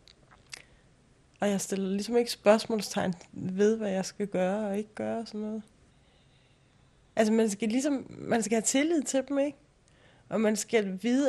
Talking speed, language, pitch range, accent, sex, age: 170 wpm, Danish, 195-235 Hz, native, female, 30-49